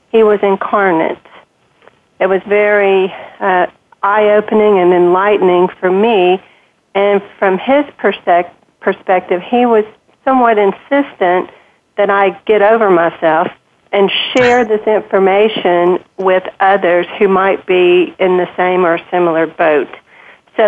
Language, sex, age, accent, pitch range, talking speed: English, female, 40-59, American, 180-210 Hz, 120 wpm